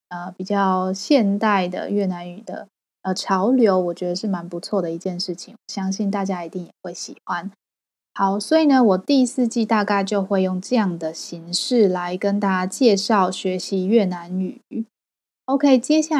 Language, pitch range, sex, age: Chinese, 185-225 Hz, female, 20-39